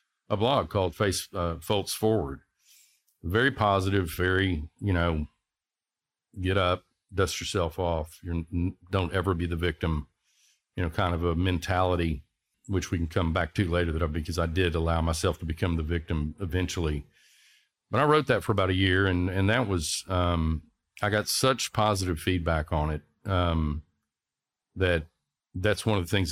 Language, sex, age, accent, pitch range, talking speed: English, male, 50-69, American, 85-100 Hz, 175 wpm